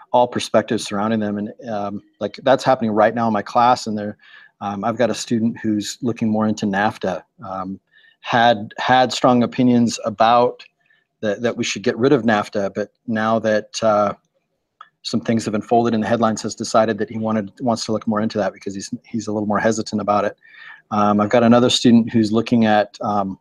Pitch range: 105-120 Hz